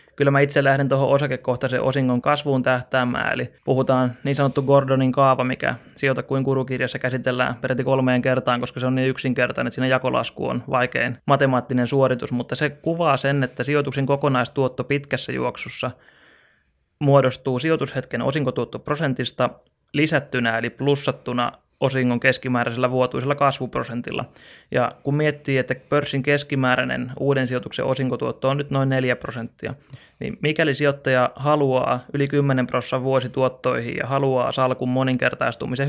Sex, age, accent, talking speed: male, 20-39, native, 130 wpm